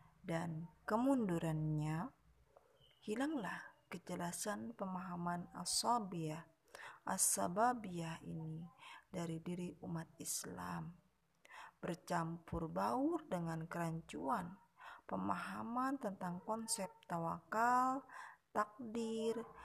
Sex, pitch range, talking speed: female, 170-235 Hz, 65 wpm